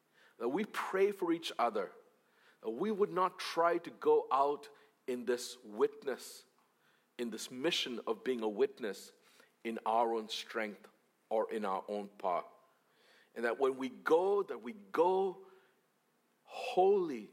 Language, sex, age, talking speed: English, male, 50-69, 145 wpm